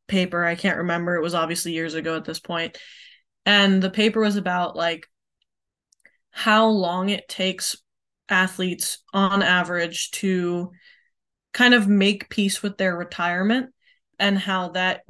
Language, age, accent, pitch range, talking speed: English, 20-39, American, 180-200 Hz, 145 wpm